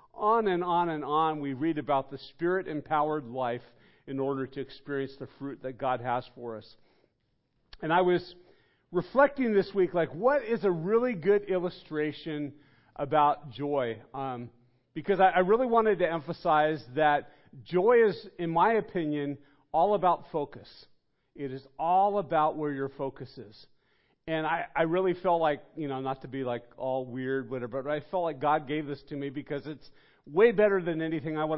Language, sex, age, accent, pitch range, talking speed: English, male, 50-69, American, 145-190 Hz, 180 wpm